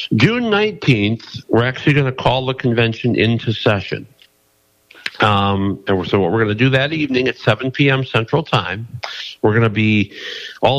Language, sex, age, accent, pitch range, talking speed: English, male, 50-69, American, 100-130 Hz, 180 wpm